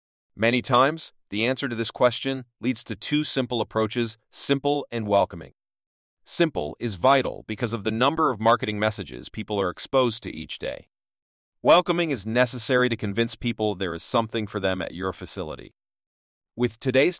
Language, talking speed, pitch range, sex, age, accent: English, 165 wpm, 105-135 Hz, male, 40-59, American